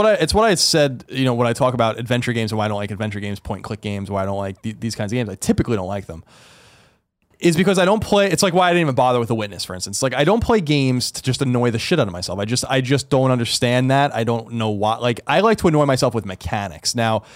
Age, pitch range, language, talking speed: 20-39, 110-150 Hz, English, 300 wpm